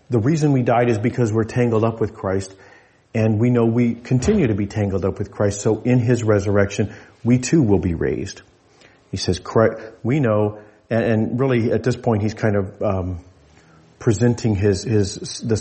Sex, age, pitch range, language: male, 40-59, 100-120 Hz, English